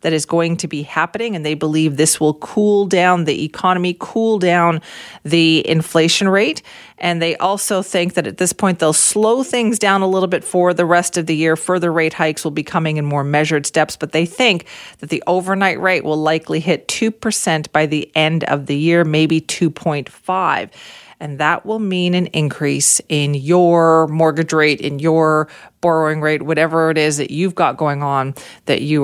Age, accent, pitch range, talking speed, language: 40-59, American, 155-185 Hz, 195 wpm, English